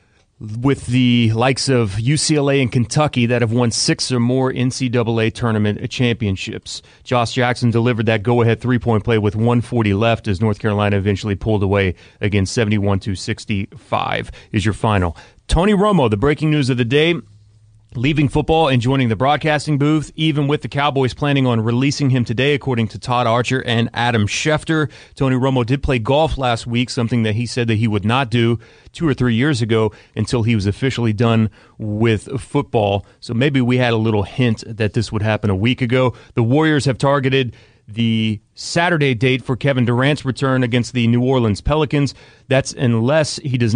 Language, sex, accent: English, male, American